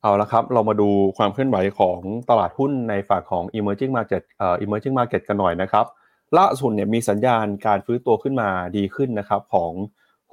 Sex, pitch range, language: male, 95-120 Hz, Thai